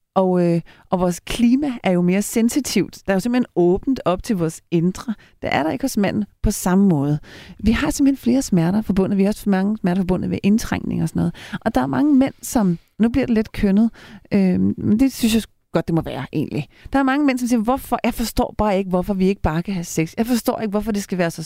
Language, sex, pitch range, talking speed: Danish, female, 190-240 Hz, 250 wpm